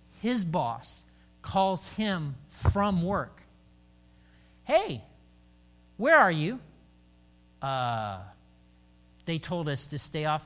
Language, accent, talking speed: English, American, 100 wpm